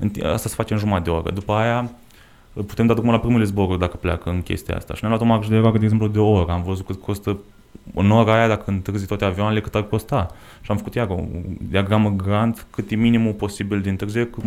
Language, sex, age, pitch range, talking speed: Romanian, male, 20-39, 100-115 Hz, 240 wpm